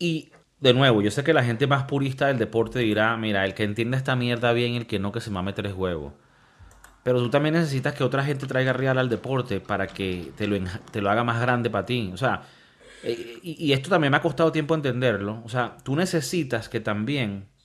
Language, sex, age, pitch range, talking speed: Spanish, male, 30-49, 110-140 Hz, 240 wpm